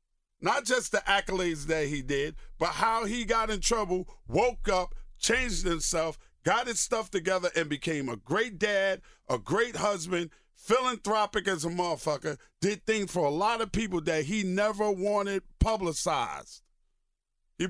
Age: 50-69